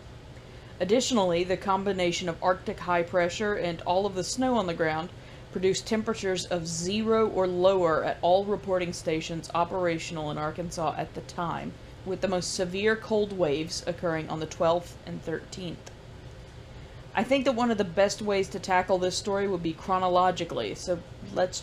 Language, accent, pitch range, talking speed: English, American, 165-195 Hz, 165 wpm